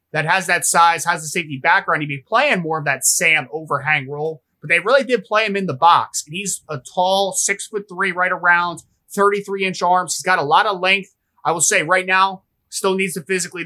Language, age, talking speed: English, 20-39, 230 wpm